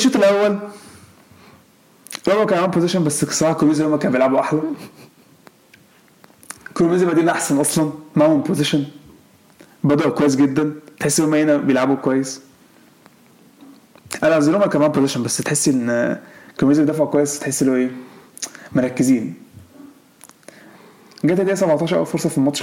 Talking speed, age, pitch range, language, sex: 125 wpm, 30-49, 135-180 Hz, Arabic, male